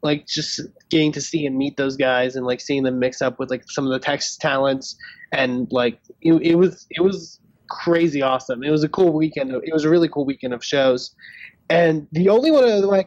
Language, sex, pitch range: English, male, 135-170 Hz